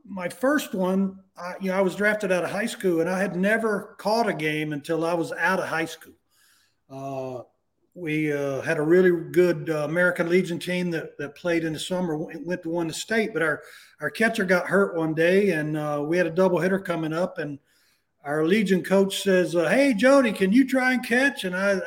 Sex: male